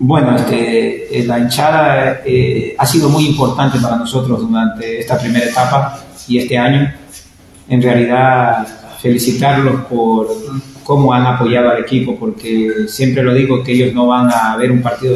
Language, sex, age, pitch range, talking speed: Spanish, male, 30-49, 110-130 Hz, 155 wpm